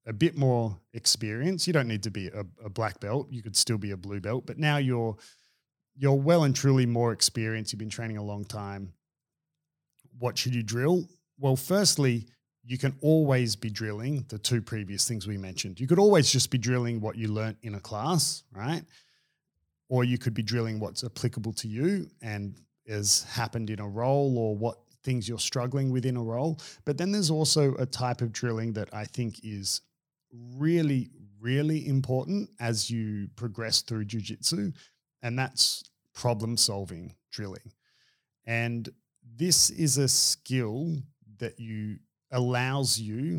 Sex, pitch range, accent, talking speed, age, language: male, 110-140 Hz, Australian, 170 wpm, 30-49, English